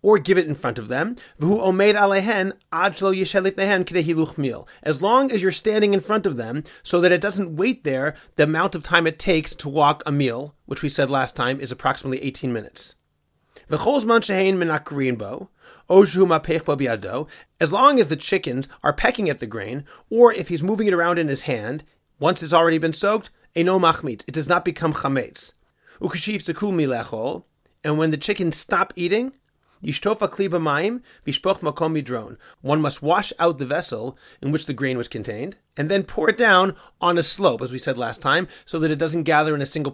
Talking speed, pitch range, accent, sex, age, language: 165 wpm, 140-190 Hz, American, male, 30-49, English